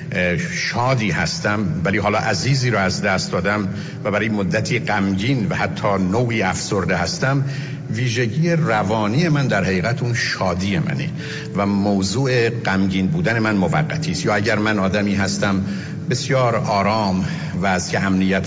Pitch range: 105-150 Hz